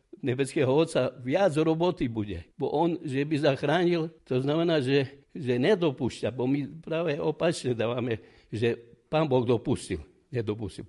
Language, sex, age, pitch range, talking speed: Slovak, male, 60-79, 120-140 Hz, 140 wpm